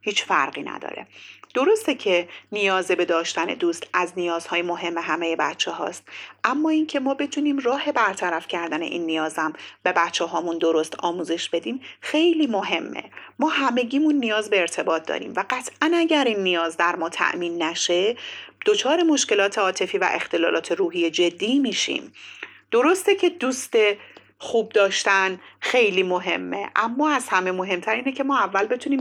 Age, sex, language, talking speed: 40-59, female, Persian, 145 wpm